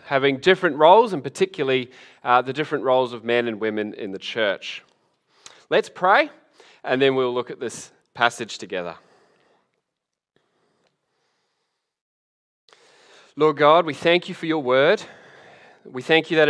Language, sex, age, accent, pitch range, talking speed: English, male, 20-39, Australian, 125-165 Hz, 140 wpm